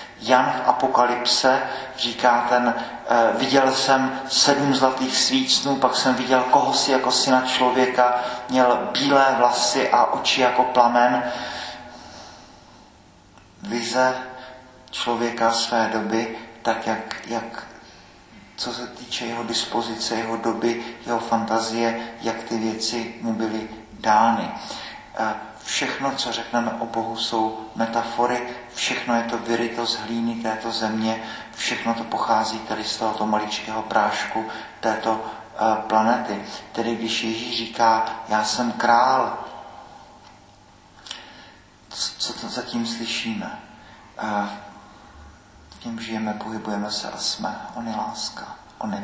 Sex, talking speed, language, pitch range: male, 115 wpm, Czech, 110-125 Hz